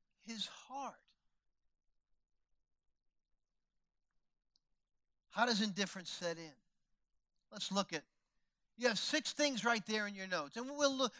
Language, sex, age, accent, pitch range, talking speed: English, male, 50-69, American, 185-225 Hz, 120 wpm